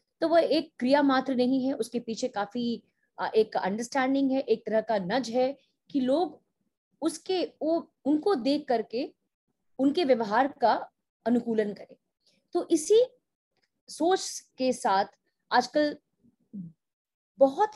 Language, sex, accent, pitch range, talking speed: Hindi, female, native, 225-320 Hz, 125 wpm